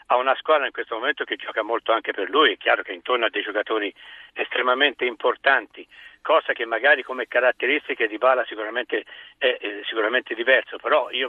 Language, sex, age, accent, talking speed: Italian, male, 60-79, native, 180 wpm